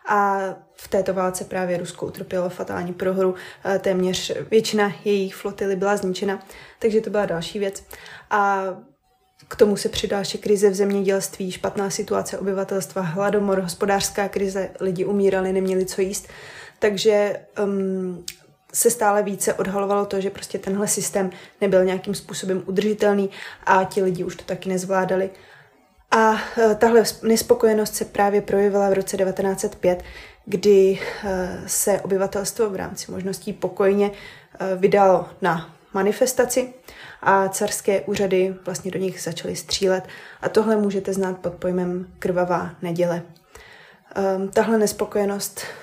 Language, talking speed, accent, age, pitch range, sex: Czech, 125 wpm, native, 20-39, 185-205 Hz, female